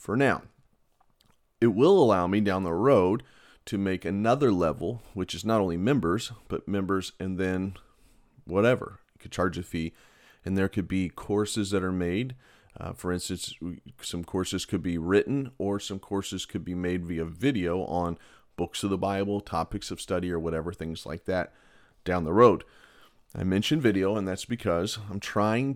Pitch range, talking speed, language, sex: 90-105 Hz, 175 wpm, English, male